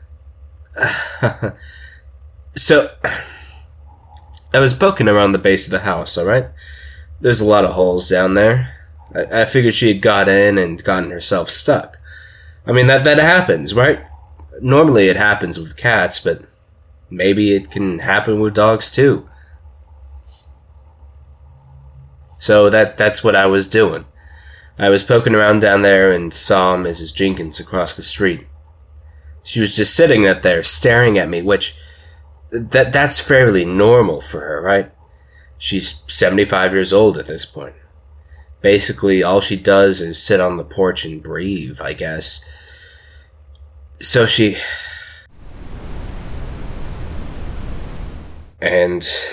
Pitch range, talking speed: 75-100 Hz, 130 wpm